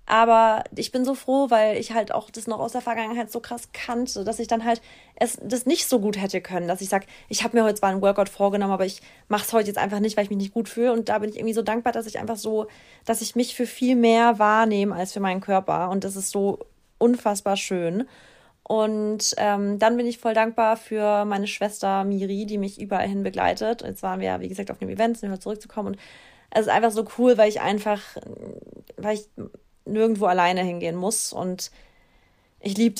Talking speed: 230 wpm